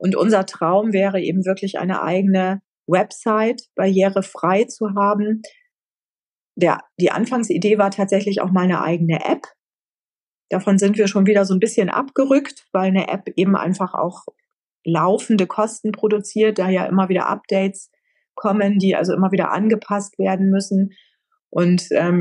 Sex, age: female, 30-49